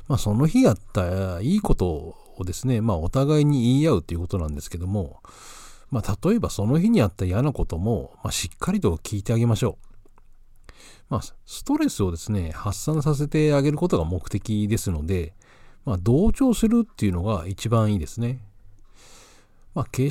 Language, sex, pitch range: Japanese, male, 95-130 Hz